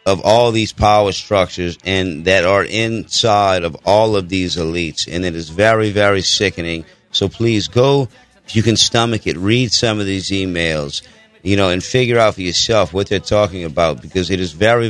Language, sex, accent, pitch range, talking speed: English, male, American, 95-115 Hz, 195 wpm